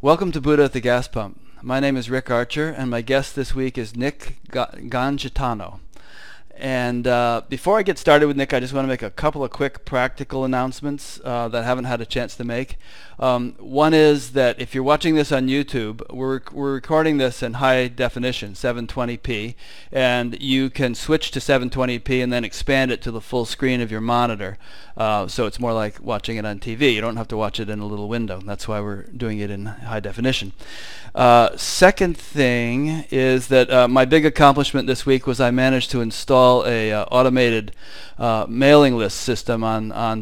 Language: English